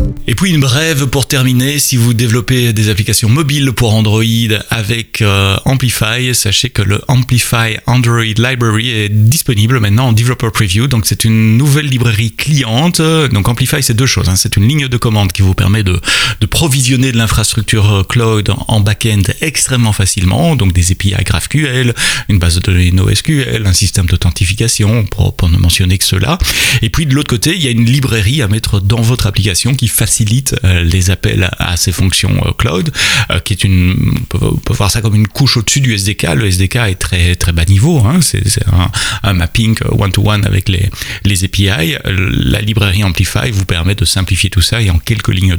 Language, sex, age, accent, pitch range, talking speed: French, male, 30-49, French, 100-125 Hz, 195 wpm